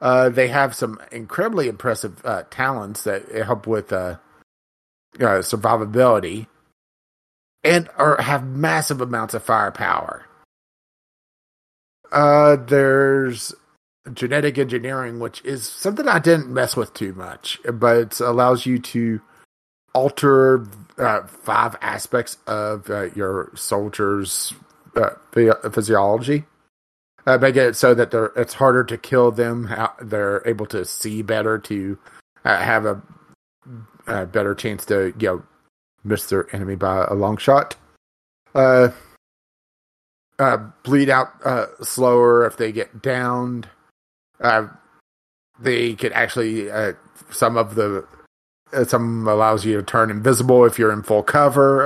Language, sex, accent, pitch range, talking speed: English, male, American, 105-130 Hz, 125 wpm